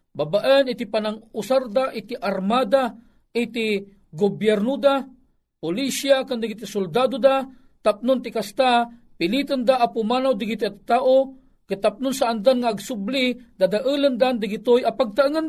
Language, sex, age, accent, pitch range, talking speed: Filipino, male, 50-69, native, 145-235 Hz, 130 wpm